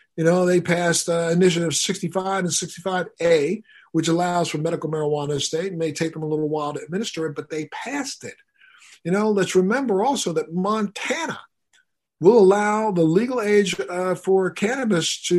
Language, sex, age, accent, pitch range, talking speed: English, male, 50-69, American, 160-195 Hz, 185 wpm